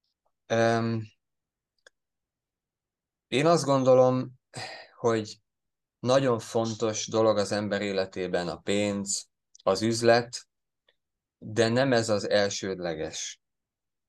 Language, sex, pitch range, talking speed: Hungarian, male, 105-120 Hz, 80 wpm